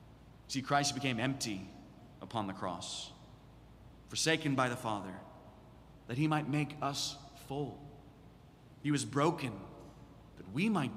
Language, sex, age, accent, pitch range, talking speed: English, male, 30-49, American, 105-135 Hz, 125 wpm